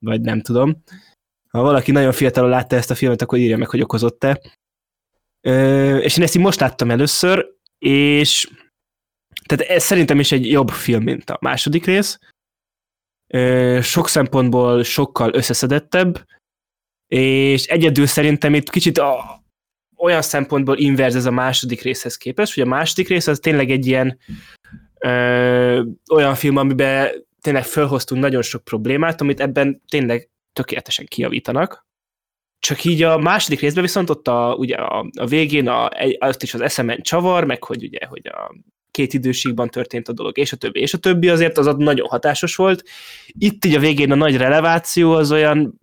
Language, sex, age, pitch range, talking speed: Hungarian, male, 20-39, 125-160 Hz, 160 wpm